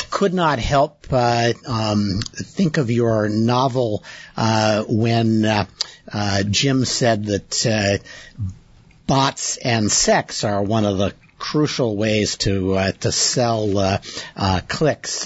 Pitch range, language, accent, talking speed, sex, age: 110-145 Hz, English, American, 130 wpm, male, 60-79